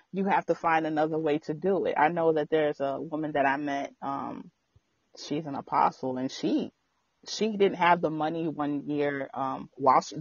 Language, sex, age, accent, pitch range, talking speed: English, female, 30-49, American, 140-170 Hz, 195 wpm